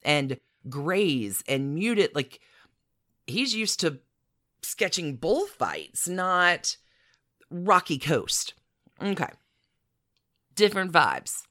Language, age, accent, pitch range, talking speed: English, 30-49, American, 125-160 Hz, 90 wpm